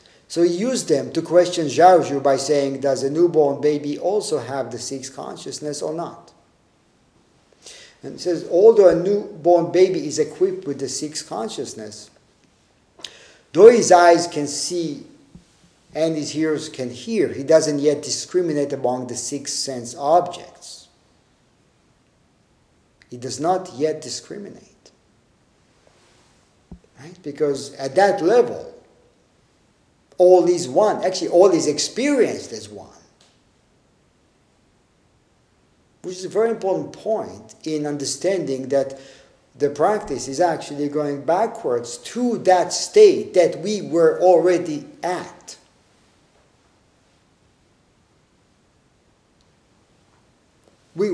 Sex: male